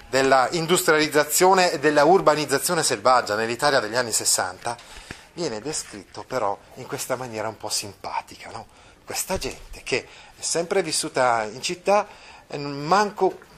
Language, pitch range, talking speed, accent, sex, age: Italian, 120-170 Hz, 135 wpm, native, male, 30-49